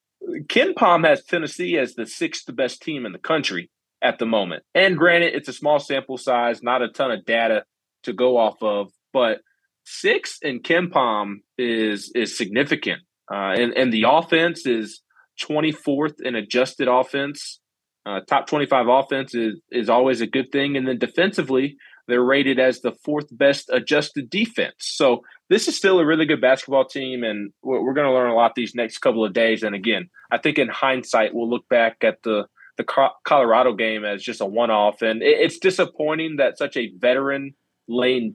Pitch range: 115-145 Hz